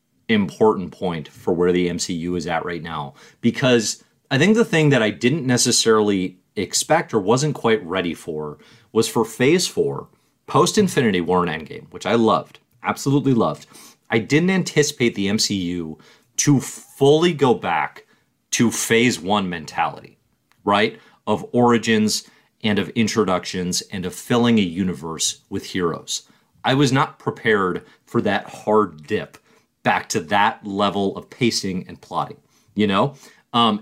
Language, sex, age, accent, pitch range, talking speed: English, male, 30-49, American, 100-140 Hz, 150 wpm